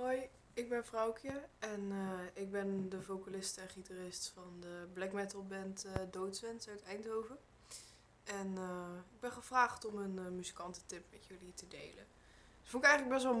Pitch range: 180-215 Hz